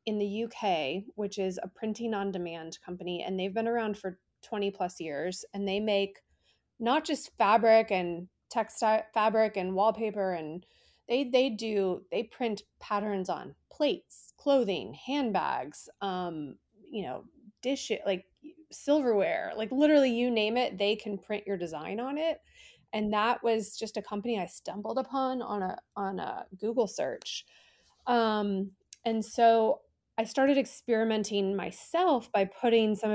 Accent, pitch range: American, 195-235 Hz